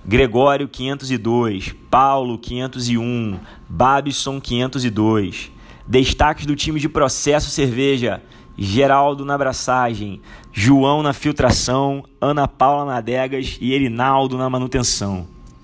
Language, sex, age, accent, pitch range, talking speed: Portuguese, male, 20-39, Brazilian, 115-135 Hz, 100 wpm